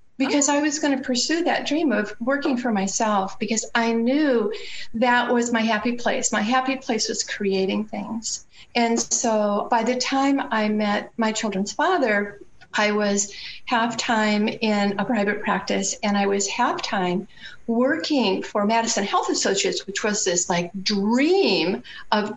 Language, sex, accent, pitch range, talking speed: English, female, American, 200-265 Hz, 160 wpm